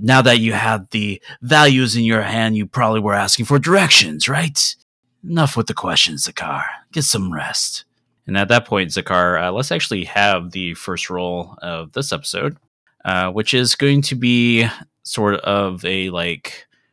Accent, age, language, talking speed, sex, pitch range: American, 30-49, English, 175 wpm, male, 95-120 Hz